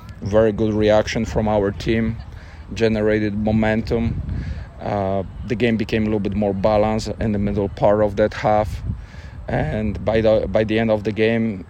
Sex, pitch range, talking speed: male, 100-110 Hz, 170 wpm